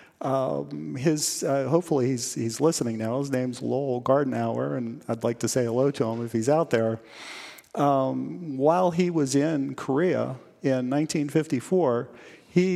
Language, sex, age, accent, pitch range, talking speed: English, male, 40-59, American, 130-155 Hz, 155 wpm